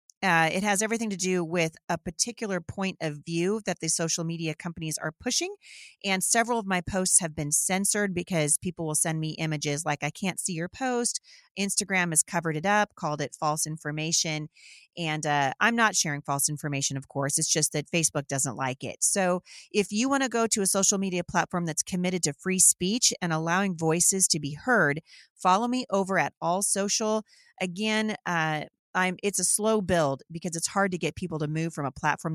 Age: 30-49